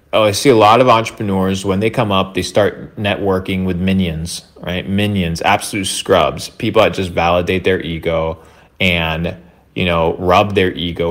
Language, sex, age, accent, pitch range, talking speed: English, male, 20-39, American, 85-95 Hz, 175 wpm